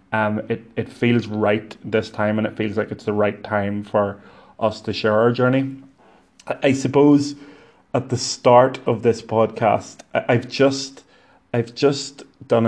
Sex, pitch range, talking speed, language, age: male, 105-120 Hz, 160 wpm, English, 20-39